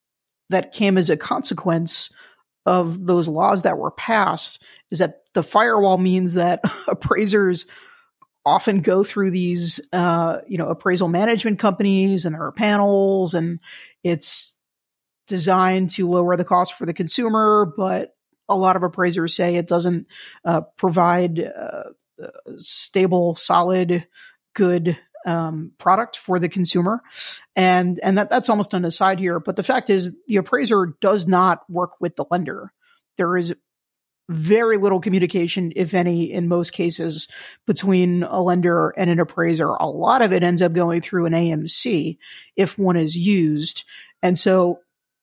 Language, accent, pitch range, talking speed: English, American, 175-200 Hz, 150 wpm